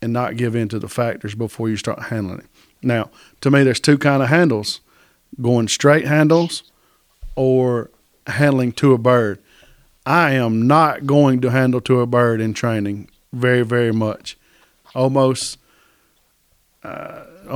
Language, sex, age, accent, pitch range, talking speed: English, male, 40-59, American, 115-135 Hz, 150 wpm